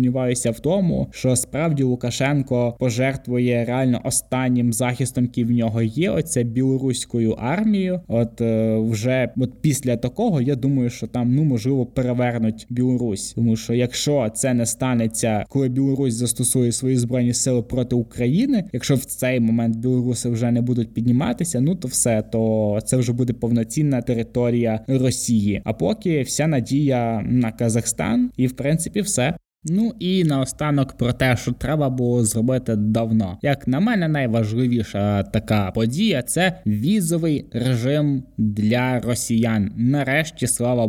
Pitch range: 120-135 Hz